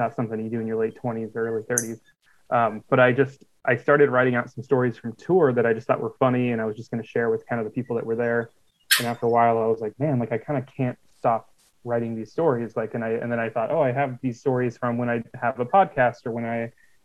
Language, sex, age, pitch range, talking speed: English, male, 20-39, 115-130 Hz, 290 wpm